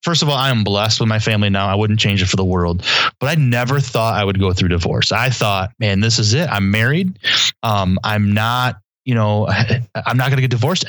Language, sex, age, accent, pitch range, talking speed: English, male, 30-49, American, 100-120 Hz, 250 wpm